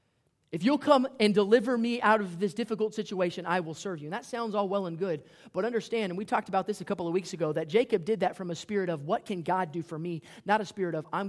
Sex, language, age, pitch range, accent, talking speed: male, English, 30-49, 145-185 Hz, American, 280 wpm